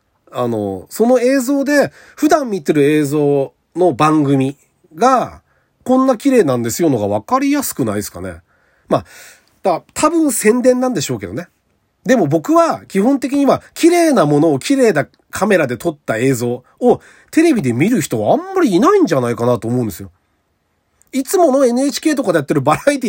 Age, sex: 40-59, male